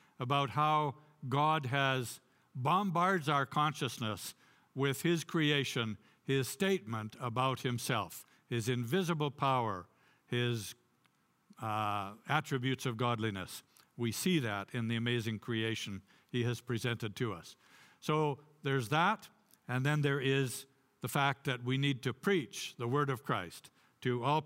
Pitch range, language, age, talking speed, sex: 120-145 Hz, English, 60-79, 130 wpm, male